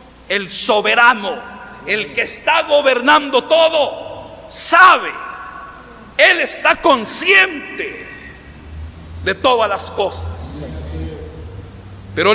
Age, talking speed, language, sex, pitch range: 50-69, 80 wpm, Spanish, male, 205-275 Hz